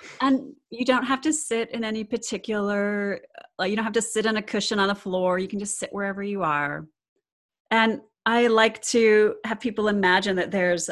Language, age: English, 30-49